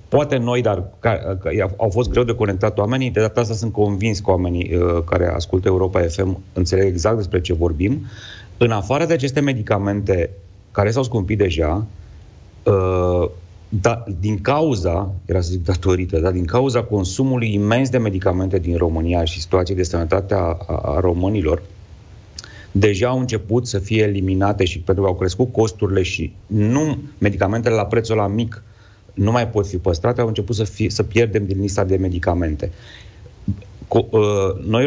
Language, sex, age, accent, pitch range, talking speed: Romanian, male, 30-49, native, 95-115 Hz, 165 wpm